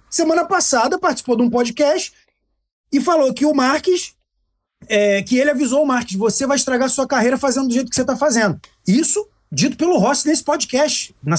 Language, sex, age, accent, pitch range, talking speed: Portuguese, male, 40-59, Brazilian, 195-275 Hz, 195 wpm